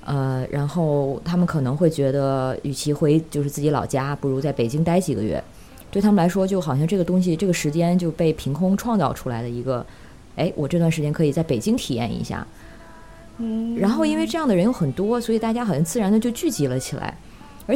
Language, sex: Chinese, female